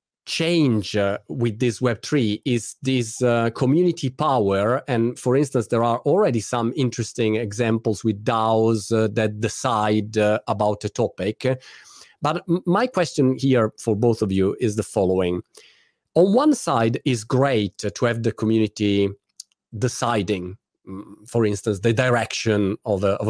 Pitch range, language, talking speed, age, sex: 105-145 Hz, Italian, 140 wpm, 40-59, male